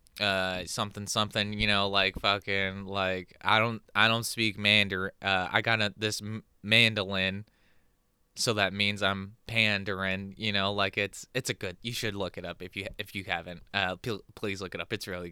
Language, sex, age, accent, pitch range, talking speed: English, male, 20-39, American, 95-115 Hz, 190 wpm